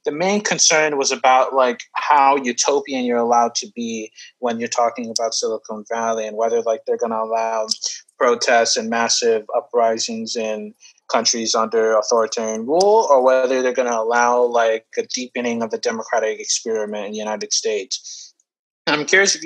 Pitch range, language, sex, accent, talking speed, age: 115-165 Hz, English, male, American, 165 wpm, 30-49